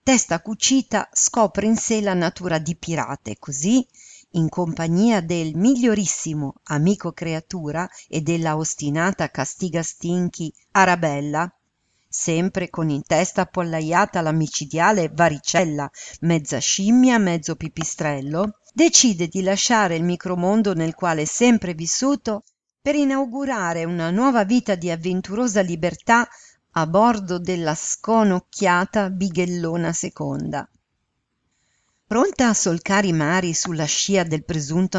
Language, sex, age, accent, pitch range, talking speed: Italian, female, 50-69, native, 165-210 Hz, 115 wpm